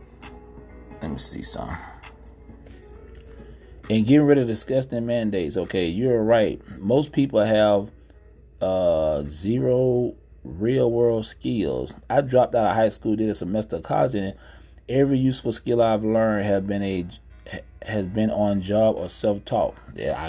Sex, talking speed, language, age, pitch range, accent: male, 140 wpm, English, 30-49, 100-135 Hz, American